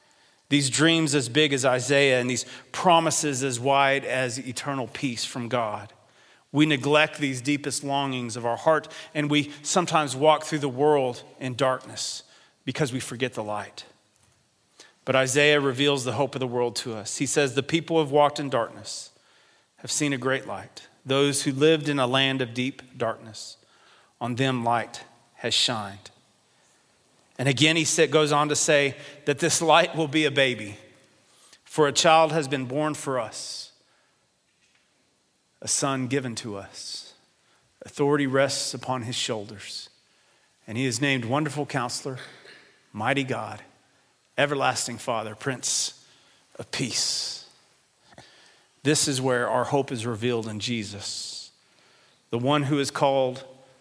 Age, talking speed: 40-59, 150 wpm